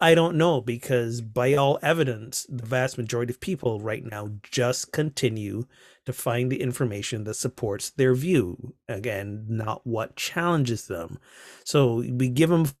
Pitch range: 120-145 Hz